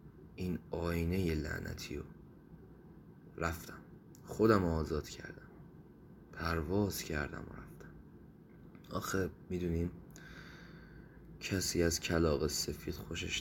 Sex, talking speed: male, 85 wpm